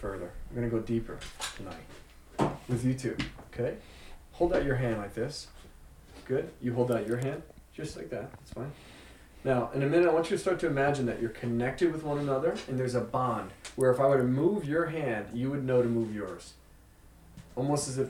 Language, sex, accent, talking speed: English, male, American, 215 wpm